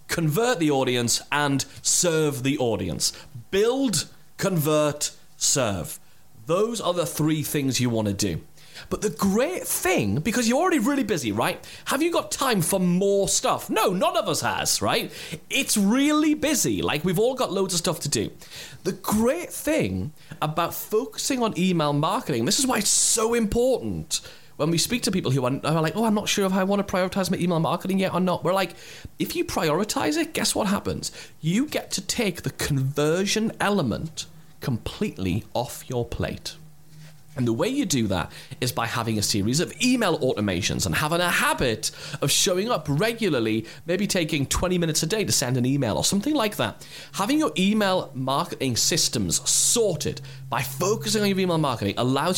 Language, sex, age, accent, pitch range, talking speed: English, male, 30-49, British, 140-205 Hz, 180 wpm